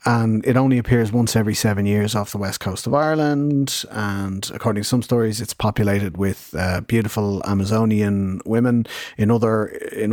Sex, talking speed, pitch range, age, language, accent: male, 170 wpm, 100-115 Hz, 30-49, English, Irish